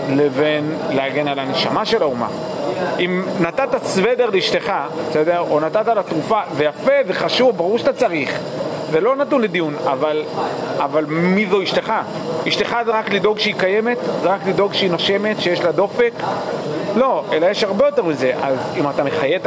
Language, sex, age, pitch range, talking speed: Hebrew, male, 40-59, 160-220 Hz, 160 wpm